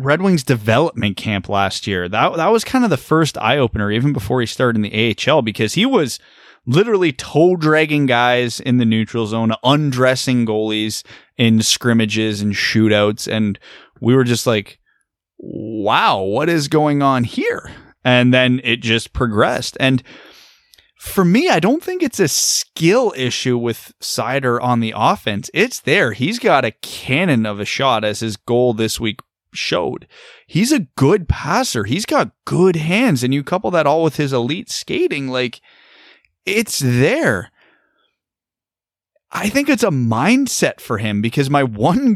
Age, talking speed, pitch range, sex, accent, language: 20-39, 160 wpm, 115-160 Hz, male, American, English